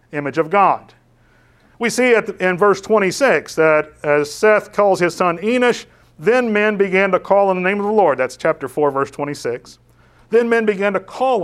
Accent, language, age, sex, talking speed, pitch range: American, English, 40-59, male, 195 wpm, 145-210 Hz